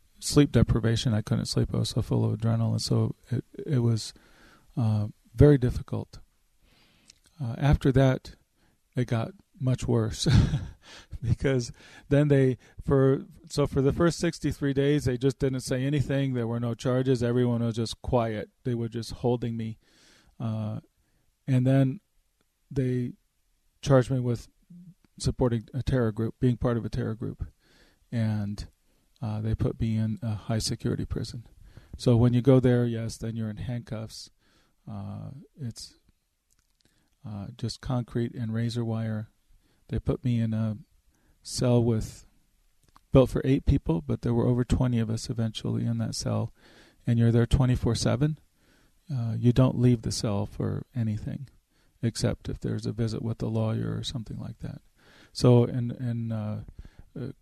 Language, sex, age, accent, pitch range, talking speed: English, male, 40-59, American, 110-130 Hz, 155 wpm